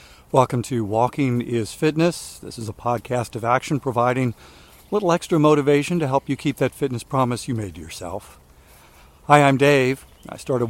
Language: English